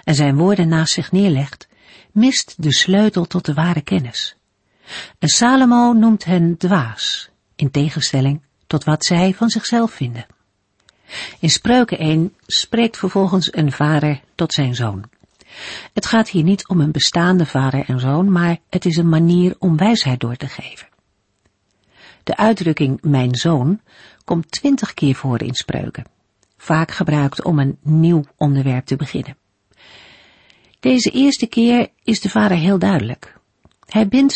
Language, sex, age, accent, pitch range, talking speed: Dutch, female, 50-69, Dutch, 135-190 Hz, 145 wpm